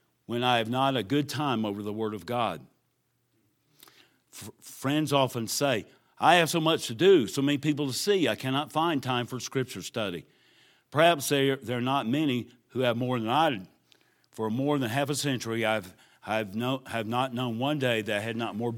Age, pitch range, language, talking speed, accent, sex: 50-69, 110-140 Hz, English, 210 wpm, American, male